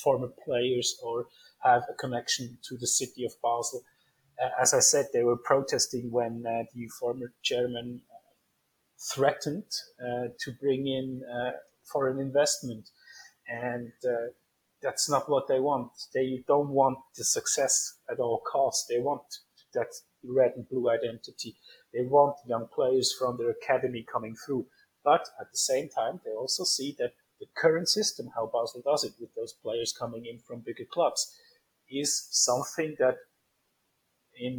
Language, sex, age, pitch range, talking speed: English, male, 30-49, 120-150 Hz, 155 wpm